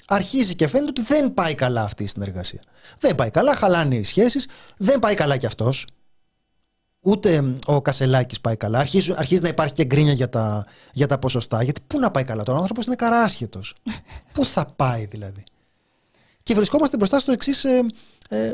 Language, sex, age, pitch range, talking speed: Greek, male, 30-49, 125-190 Hz, 185 wpm